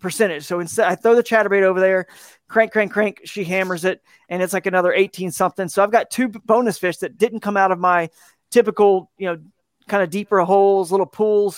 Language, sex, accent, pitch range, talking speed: English, male, American, 175-205 Hz, 220 wpm